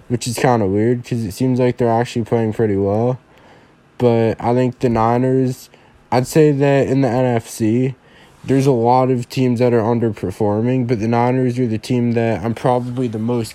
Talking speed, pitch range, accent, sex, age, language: 195 wpm, 115-125 Hz, American, male, 20-39, English